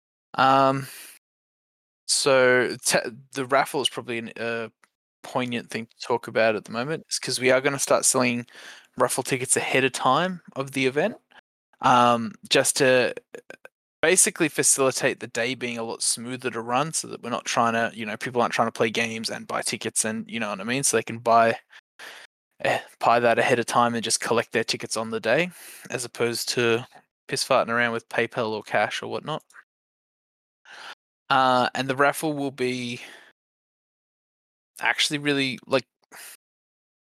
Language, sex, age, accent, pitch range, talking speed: English, male, 10-29, Australian, 115-140 Hz, 175 wpm